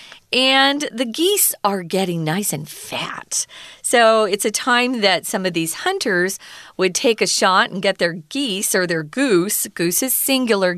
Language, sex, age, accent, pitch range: Chinese, female, 40-59, American, 180-265 Hz